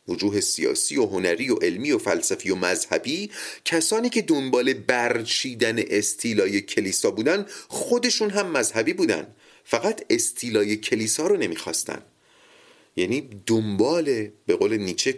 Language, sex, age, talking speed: Persian, male, 30-49, 120 wpm